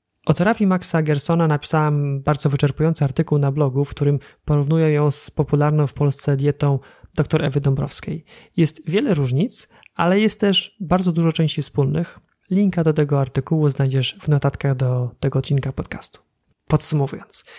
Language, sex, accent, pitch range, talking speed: Polish, male, native, 145-165 Hz, 150 wpm